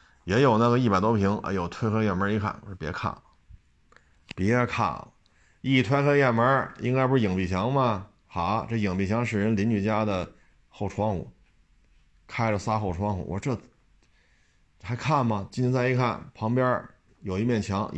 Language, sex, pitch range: Chinese, male, 90-115 Hz